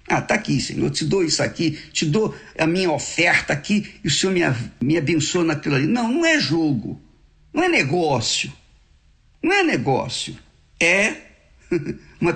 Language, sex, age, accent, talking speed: Portuguese, male, 50-69, Brazilian, 160 wpm